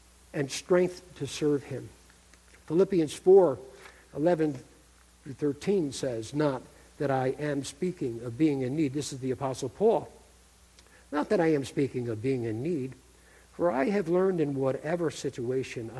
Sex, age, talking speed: male, 60-79, 145 wpm